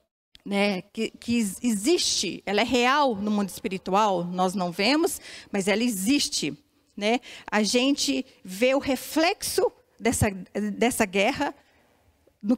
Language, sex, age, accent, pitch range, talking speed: Portuguese, female, 40-59, Brazilian, 200-270 Hz, 125 wpm